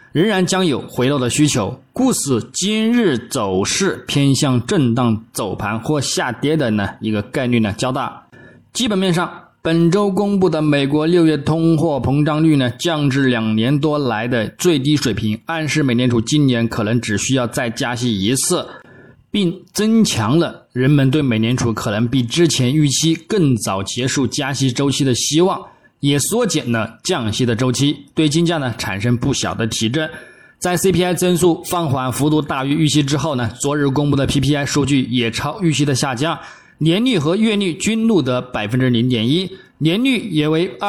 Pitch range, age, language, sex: 125-165 Hz, 20-39, Chinese, male